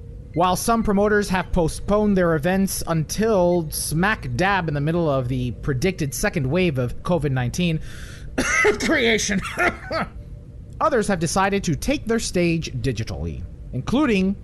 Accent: American